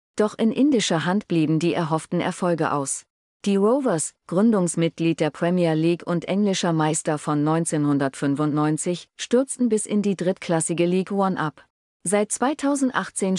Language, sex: German, female